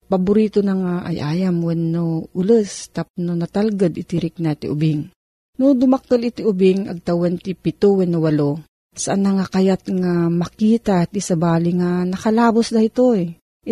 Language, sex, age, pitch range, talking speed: Filipino, female, 40-59, 170-215 Hz, 150 wpm